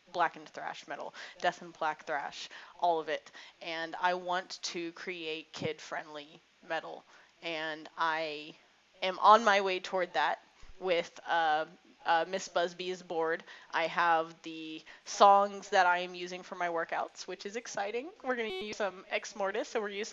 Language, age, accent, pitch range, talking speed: English, 20-39, American, 165-200 Hz, 165 wpm